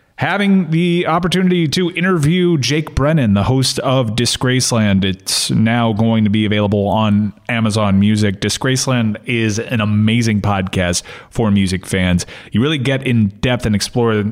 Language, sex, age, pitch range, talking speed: English, male, 30-49, 110-150 Hz, 145 wpm